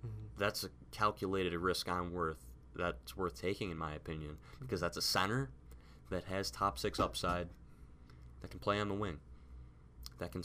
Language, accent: English, American